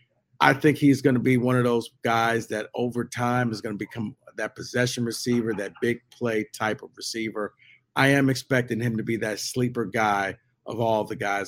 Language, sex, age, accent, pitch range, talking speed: English, male, 50-69, American, 115-135 Hz, 195 wpm